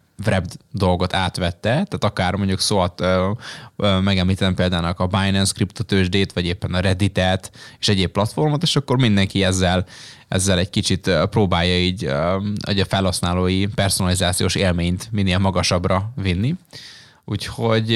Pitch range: 95-110 Hz